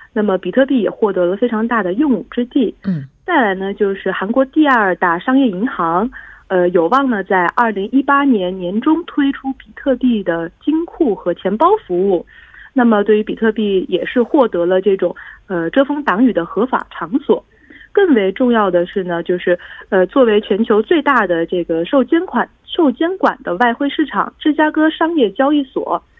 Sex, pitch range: female, 180-265 Hz